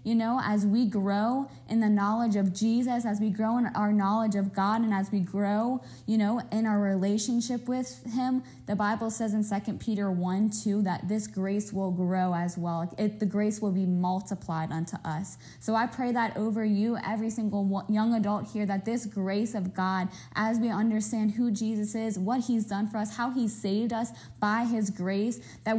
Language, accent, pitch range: English, American, 195-225 Hz